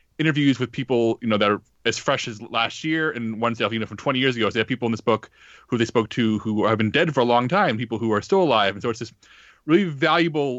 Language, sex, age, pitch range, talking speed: English, male, 30-49, 115-140 Hz, 285 wpm